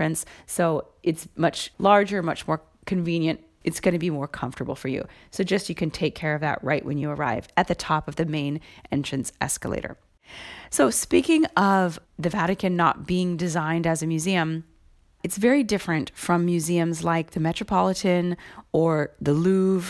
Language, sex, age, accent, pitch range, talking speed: English, female, 30-49, American, 155-180 Hz, 170 wpm